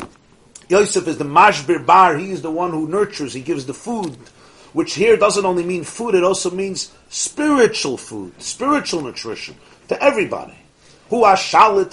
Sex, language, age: male, English, 40-59